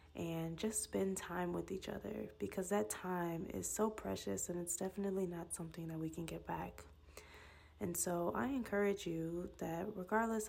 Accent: American